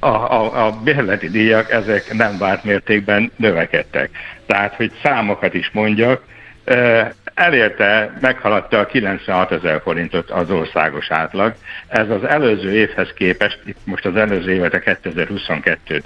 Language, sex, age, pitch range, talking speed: Hungarian, male, 60-79, 90-105 Hz, 125 wpm